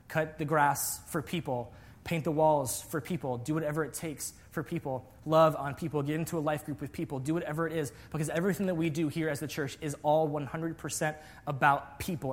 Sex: male